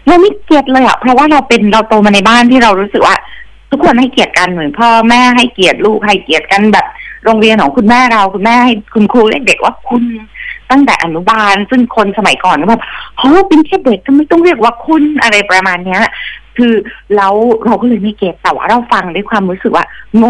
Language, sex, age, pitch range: Thai, female, 30-49, 190-250 Hz